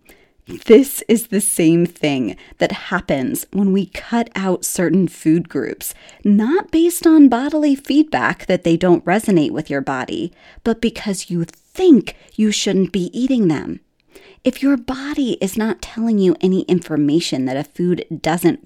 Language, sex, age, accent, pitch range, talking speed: English, female, 30-49, American, 180-260 Hz, 155 wpm